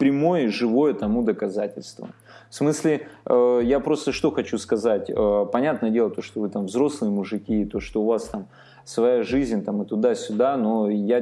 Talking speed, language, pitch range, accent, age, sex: 170 wpm, Russian, 105-140 Hz, native, 20-39, male